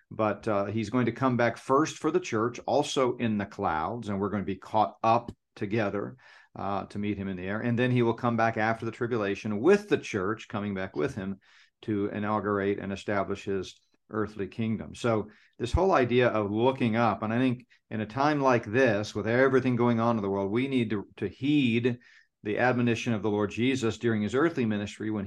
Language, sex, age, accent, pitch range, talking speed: English, male, 50-69, American, 105-120 Hz, 215 wpm